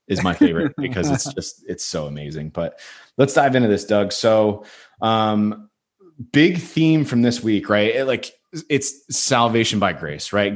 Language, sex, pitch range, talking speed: English, male, 90-115 Hz, 170 wpm